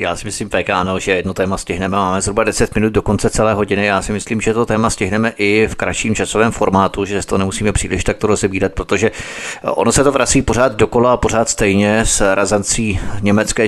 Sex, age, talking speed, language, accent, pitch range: male, 30-49, 205 wpm, Czech, native, 100-125 Hz